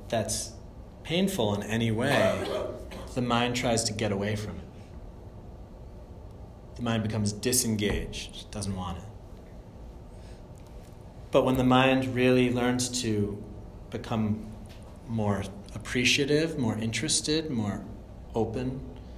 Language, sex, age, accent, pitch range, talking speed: English, male, 30-49, American, 100-125 Hz, 105 wpm